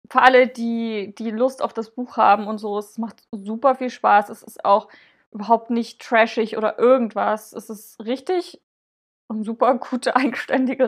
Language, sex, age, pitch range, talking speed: German, female, 20-39, 215-250 Hz, 170 wpm